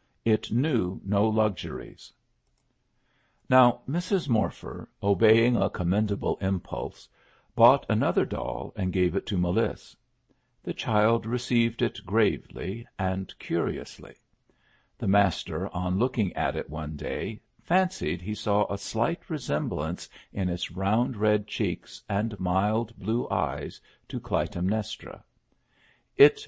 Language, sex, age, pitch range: English, male, 60-79, 90-115 Hz